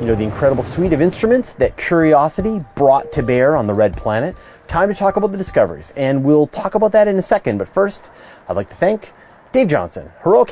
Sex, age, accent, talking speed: male, 30-49, American, 220 wpm